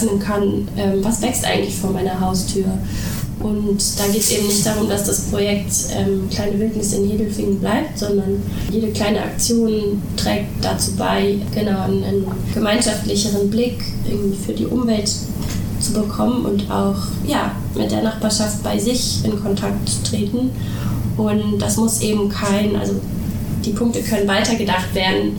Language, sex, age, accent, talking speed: German, female, 20-39, German, 150 wpm